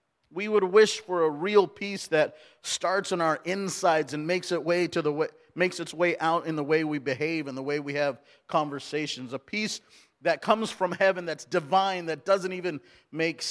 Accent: American